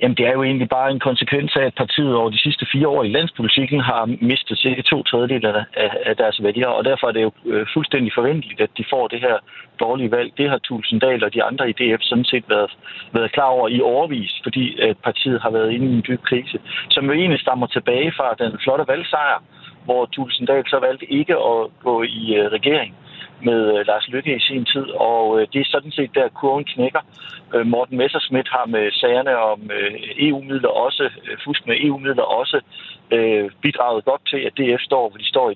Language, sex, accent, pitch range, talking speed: Danish, male, native, 115-135 Hz, 200 wpm